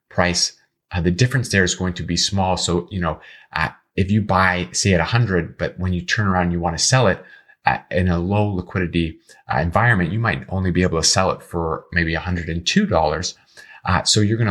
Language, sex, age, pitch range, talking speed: English, male, 30-49, 85-100 Hz, 210 wpm